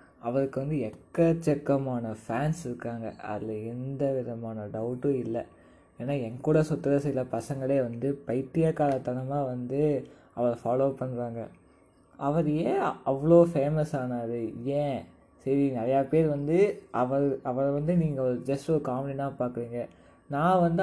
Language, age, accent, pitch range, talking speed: Tamil, 20-39, native, 125-155 Hz, 125 wpm